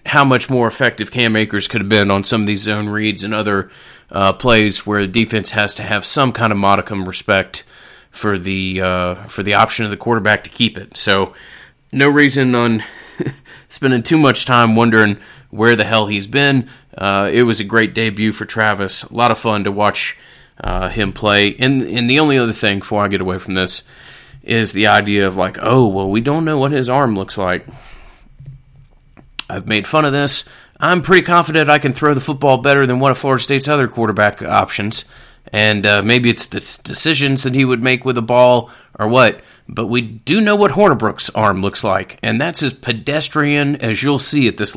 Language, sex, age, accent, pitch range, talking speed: English, male, 30-49, American, 105-135 Hz, 210 wpm